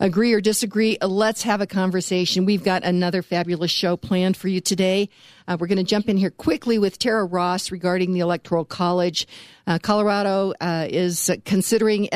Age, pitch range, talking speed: 50-69, 175-210 Hz, 180 wpm